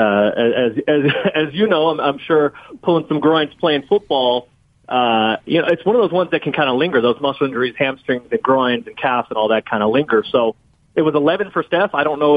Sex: male